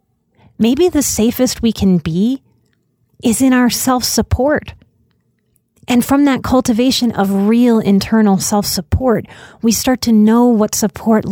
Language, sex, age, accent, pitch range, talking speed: English, female, 30-49, American, 190-235 Hz, 125 wpm